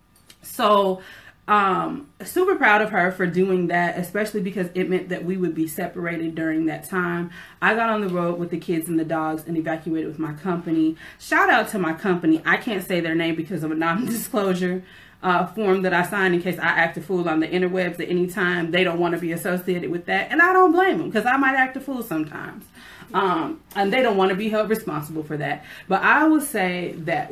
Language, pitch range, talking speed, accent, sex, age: English, 165-190 Hz, 225 wpm, American, female, 30-49